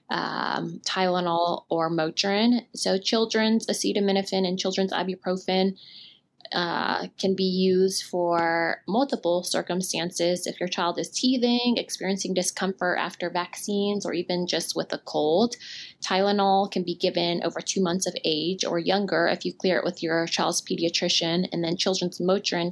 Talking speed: 145 wpm